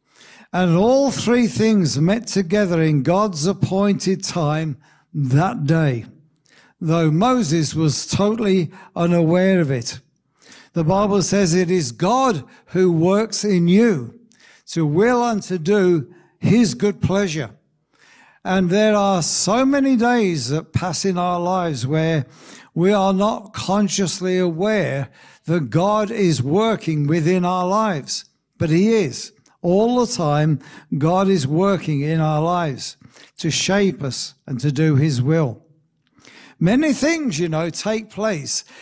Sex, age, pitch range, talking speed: male, 60-79, 160-210 Hz, 135 wpm